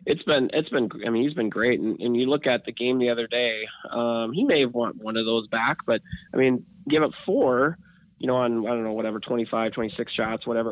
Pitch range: 115-125 Hz